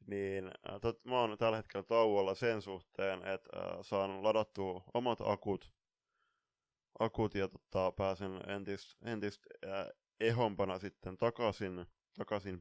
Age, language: 20-39, Finnish